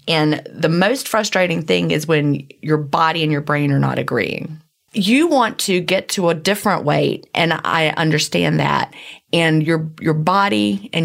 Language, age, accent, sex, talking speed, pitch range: English, 30-49, American, female, 175 wpm, 150-195 Hz